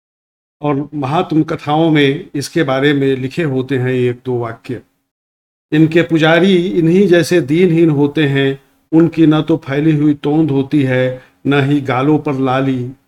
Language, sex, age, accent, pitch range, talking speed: Hindi, male, 50-69, native, 130-155 Hz, 150 wpm